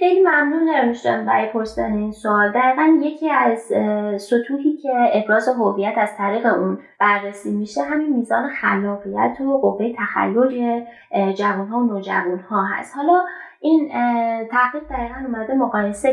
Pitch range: 205-255 Hz